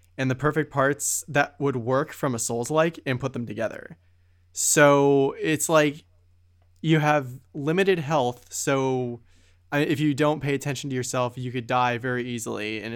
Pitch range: 115-140 Hz